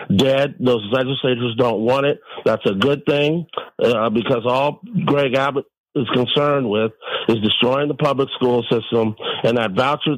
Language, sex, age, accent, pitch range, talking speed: English, male, 50-69, American, 120-140 Hz, 160 wpm